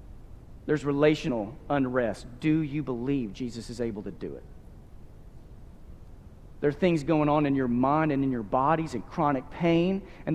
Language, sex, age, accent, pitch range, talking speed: English, male, 40-59, American, 130-170 Hz, 160 wpm